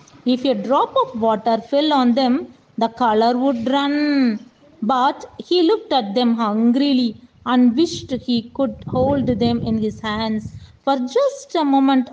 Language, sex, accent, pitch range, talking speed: Tamil, female, native, 215-275 Hz, 155 wpm